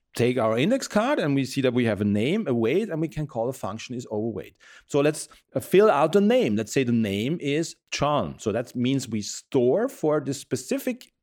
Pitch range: 115-170 Hz